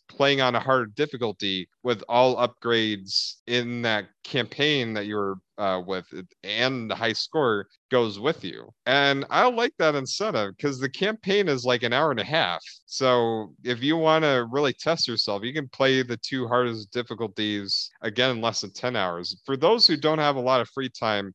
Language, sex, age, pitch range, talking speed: English, male, 30-49, 115-145 Hz, 190 wpm